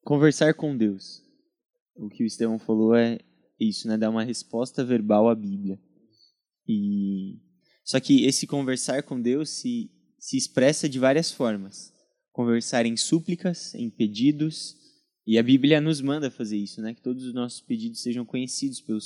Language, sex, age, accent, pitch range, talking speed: Portuguese, male, 20-39, Brazilian, 115-150 Hz, 160 wpm